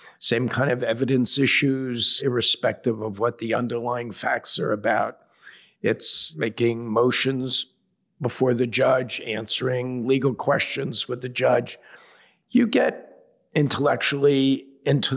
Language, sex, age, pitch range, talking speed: English, male, 50-69, 100-130 Hz, 115 wpm